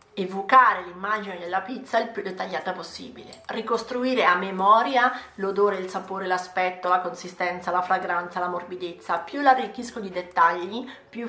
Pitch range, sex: 190-245 Hz, female